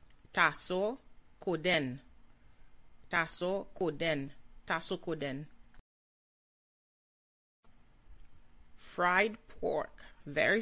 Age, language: 30-49, English